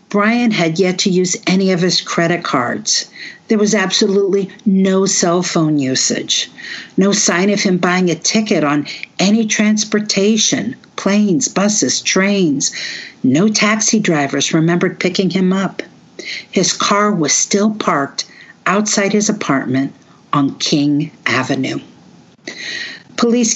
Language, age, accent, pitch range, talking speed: English, 50-69, American, 155-205 Hz, 125 wpm